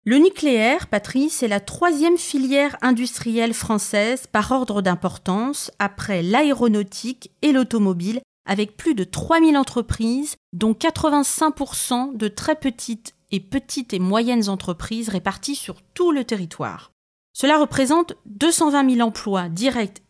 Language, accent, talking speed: French, French, 125 wpm